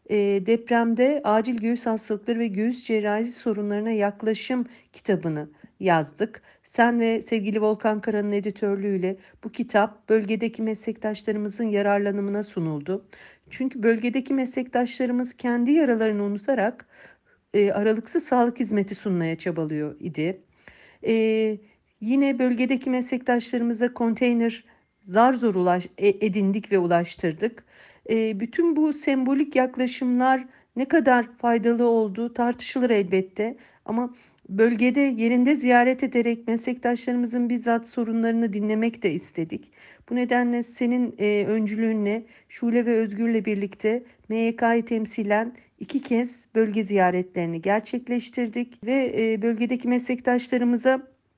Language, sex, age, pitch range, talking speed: Turkish, female, 50-69, 210-245 Hz, 100 wpm